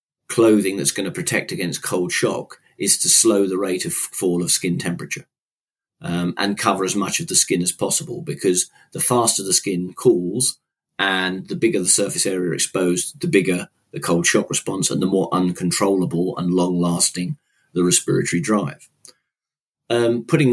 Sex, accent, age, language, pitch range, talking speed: male, British, 40-59, English, 95-110 Hz, 170 wpm